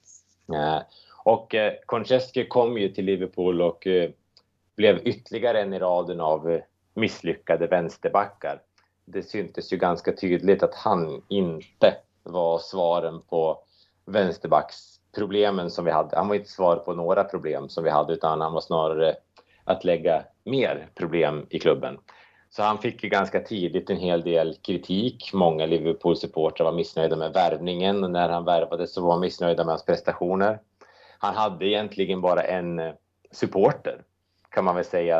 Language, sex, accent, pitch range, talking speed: Swedish, male, Norwegian, 85-100 Hz, 145 wpm